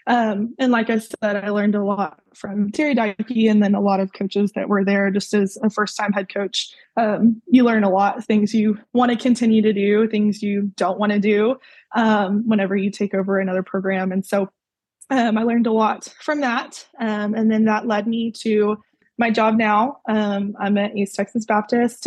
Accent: American